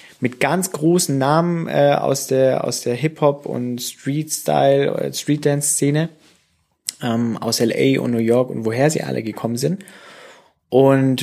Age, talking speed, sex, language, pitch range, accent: 20-39, 140 wpm, male, German, 115-155 Hz, German